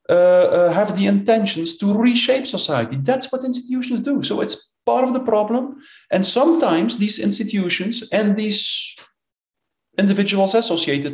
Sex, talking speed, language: male, 140 wpm, English